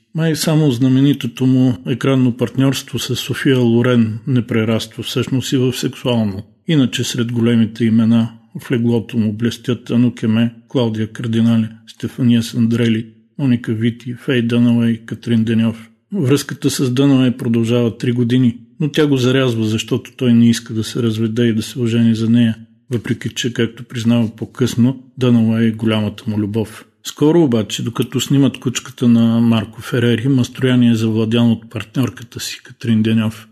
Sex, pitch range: male, 115-125 Hz